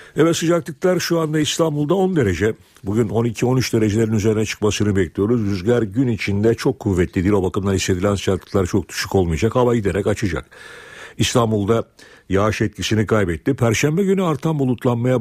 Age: 60-79